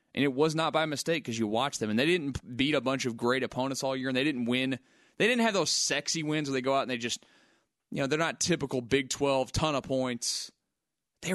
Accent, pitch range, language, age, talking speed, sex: American, 125-155 Hz, English, 20-39, 260 wpm, male